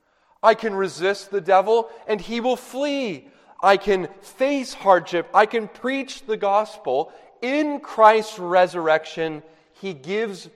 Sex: male